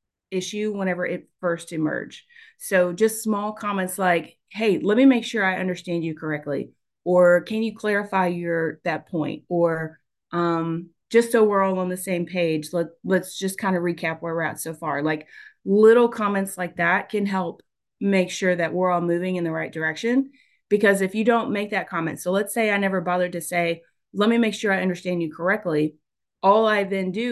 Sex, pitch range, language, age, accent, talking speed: female, 170-205 Hz, English, 30-49, American, 200 wpm